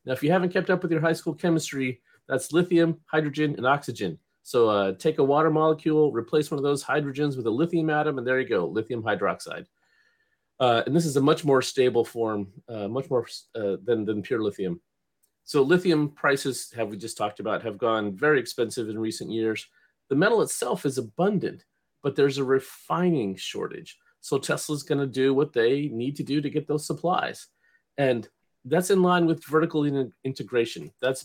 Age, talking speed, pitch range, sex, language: 40-59, 195 wpm, 125-160 Hz, male, English